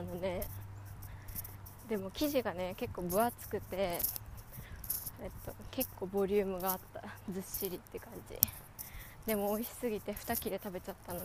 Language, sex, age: Japanese, female, 20-39